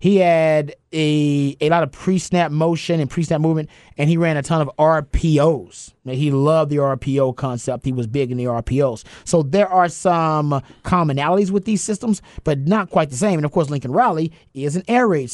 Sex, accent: male, American